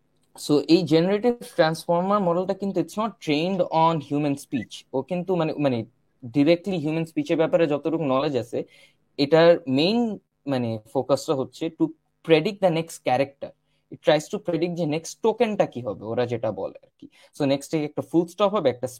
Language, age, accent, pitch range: Bengali, 20-39, native, 140-200 Hz